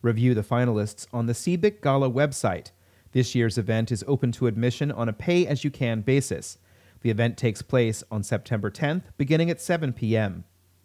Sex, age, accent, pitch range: male, 30-49, American, 105-140 Hz